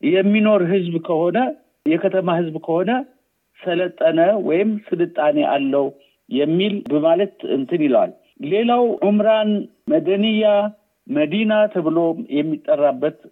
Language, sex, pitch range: Amharic, male, 165-230 Hz